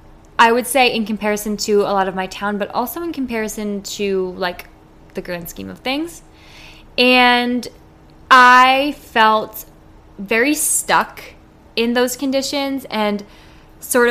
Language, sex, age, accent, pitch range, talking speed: English, female, 20-39, American, 195-235 Hz, 135 wpm